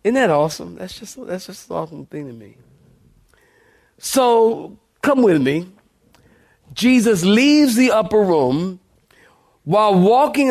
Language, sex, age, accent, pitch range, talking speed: English, male, 40-59, American, 170-210 Hz, 130 wpm